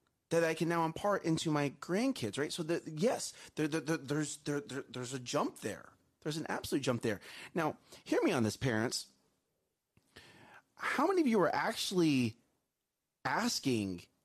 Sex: male